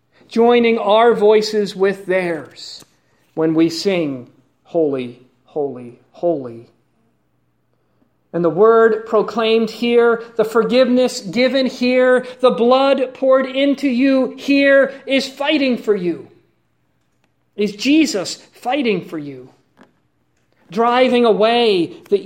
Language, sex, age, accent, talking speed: English, male, 40-59, American, 100 wpm